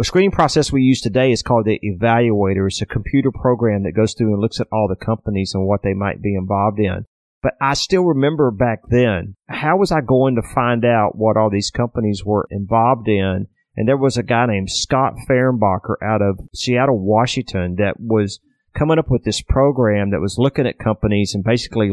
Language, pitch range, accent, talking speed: English, 105-130 Hz, American, 210 wpm